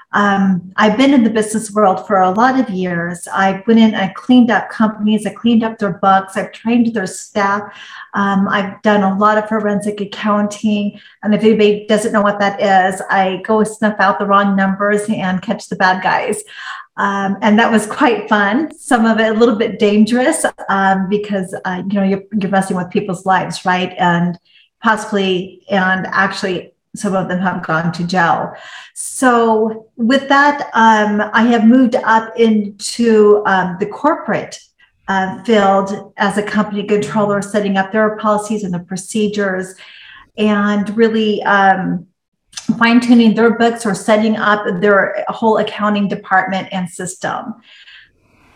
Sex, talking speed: female, 165 wpm